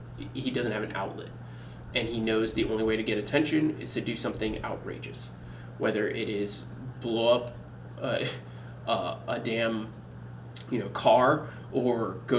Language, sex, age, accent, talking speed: English, male, 20-39, American, 160 wpm